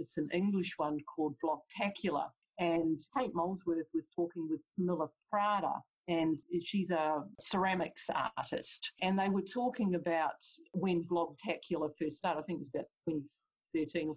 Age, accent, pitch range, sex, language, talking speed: 50-69, Australian, 165-225 Hz, female, English, 150 wpm